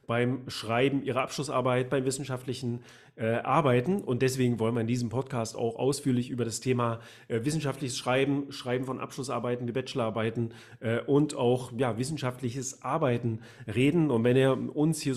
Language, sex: German, male